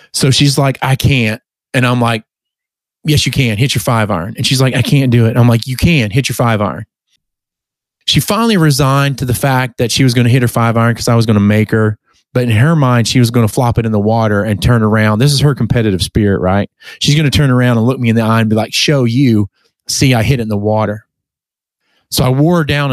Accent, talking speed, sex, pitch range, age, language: American, 270 wpm, male, 110-140 Hz, 30-49, English